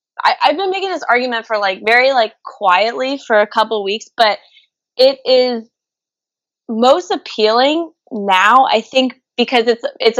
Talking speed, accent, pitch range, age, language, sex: 160 wpm, American, 195-245 Hz, 20-39, English, female